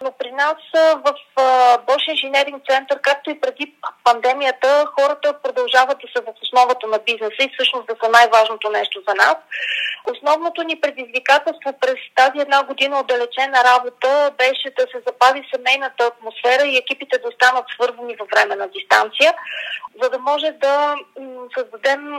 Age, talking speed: 30-49, 150 wpm